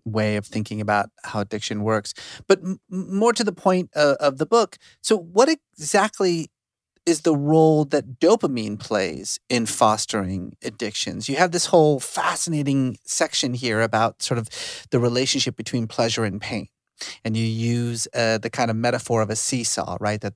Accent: American